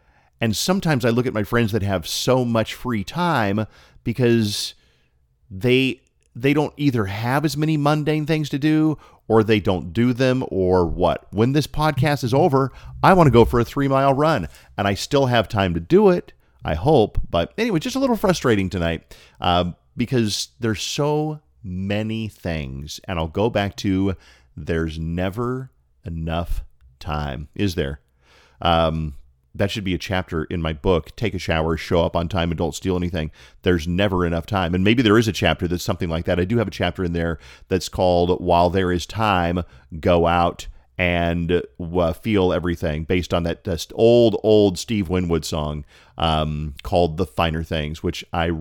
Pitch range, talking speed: 85-110 Hz, 185 wpm